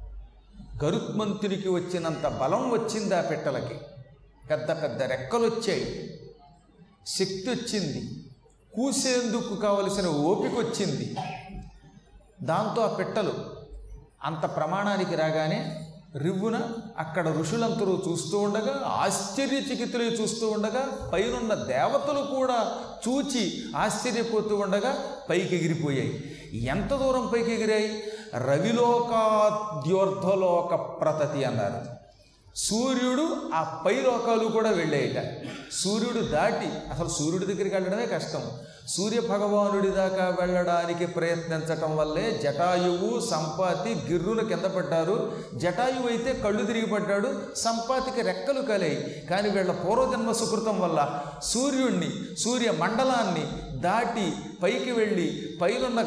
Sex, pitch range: male, 160-230 Hz